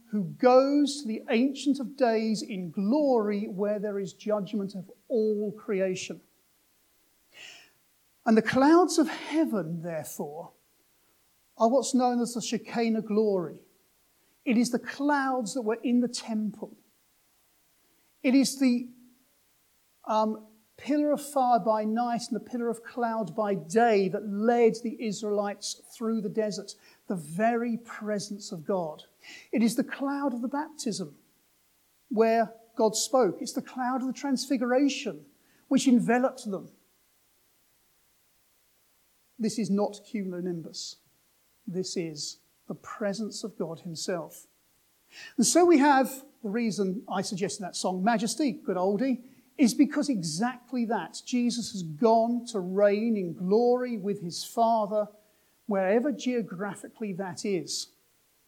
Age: 50-69